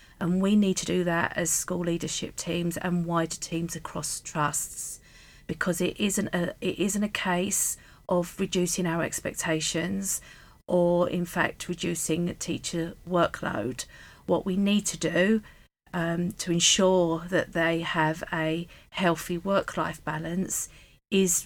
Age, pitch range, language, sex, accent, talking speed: 40-59, 165-185 Hz, English, female, British, 145 wpm